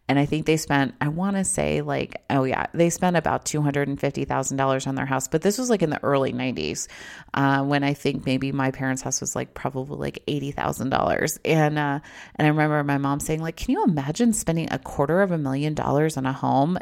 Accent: American